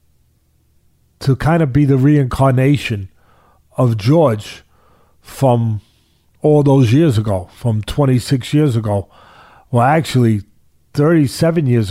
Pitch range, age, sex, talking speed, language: 100-145 Hz, 40-59, male, 105 wpm, English